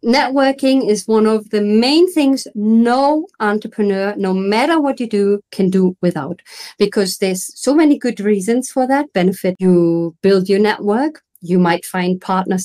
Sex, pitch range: female, 195-250 Hz